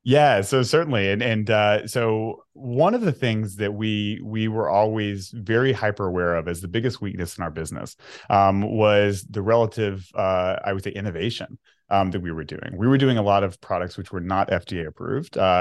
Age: 30-49